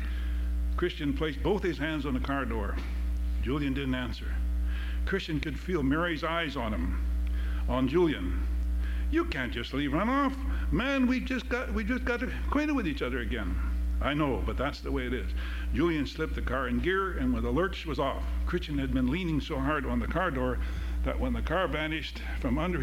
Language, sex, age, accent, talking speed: English, male, 60-79, American, 200 wpm